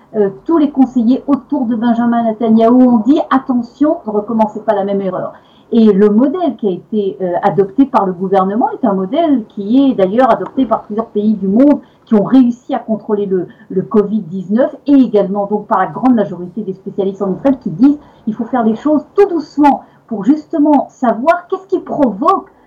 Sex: female